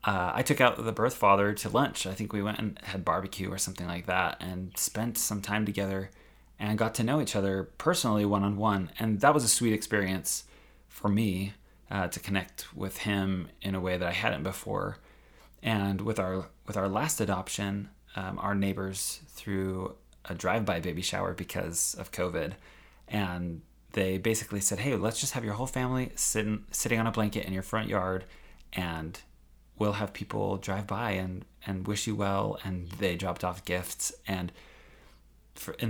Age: 20-39